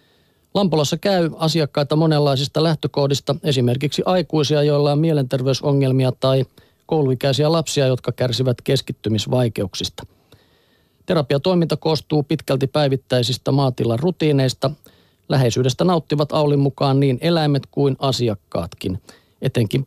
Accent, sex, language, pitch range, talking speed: native, male, Finnish, 125-150 Hz, 95 wpm